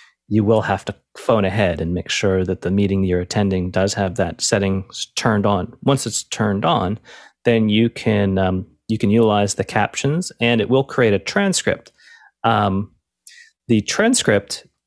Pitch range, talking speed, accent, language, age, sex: 95-115 Hz, 160 wpm, American, English, 30-49, male